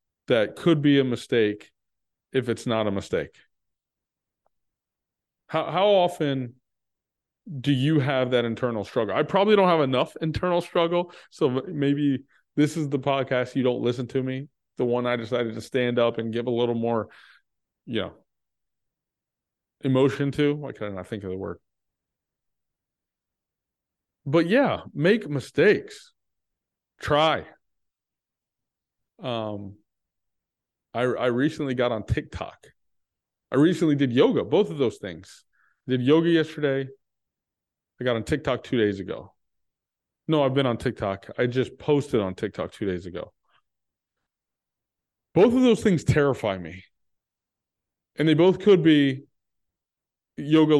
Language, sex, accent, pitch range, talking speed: English, male, American, 110-150 Hz, 135 wpm